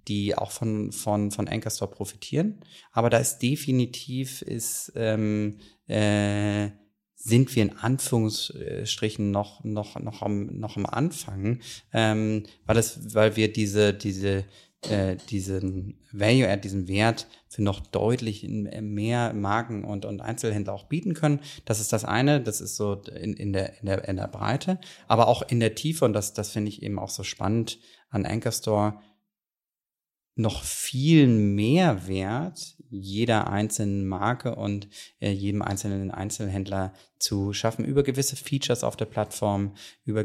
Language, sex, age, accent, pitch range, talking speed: German, male, 30-49, German, 100-120 Hz, 150 wpm